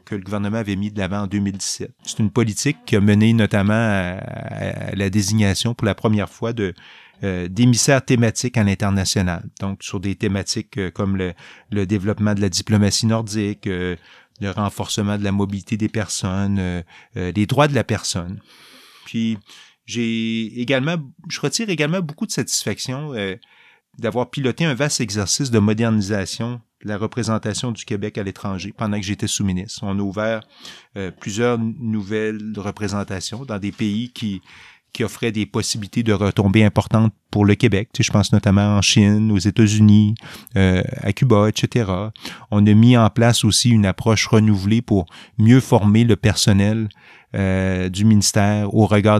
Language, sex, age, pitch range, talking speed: French, male, 30-49, 100-115 Hz, 165 wpm